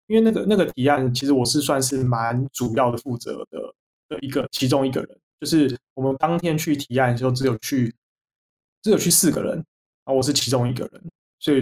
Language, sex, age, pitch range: Chinese, male, 20-39, 125-145 Hz